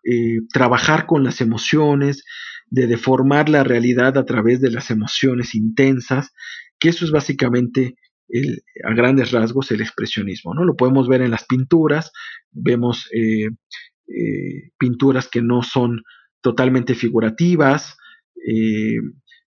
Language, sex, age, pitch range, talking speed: Spanish, male, 40-59, 120-155 Hz, 125 wpm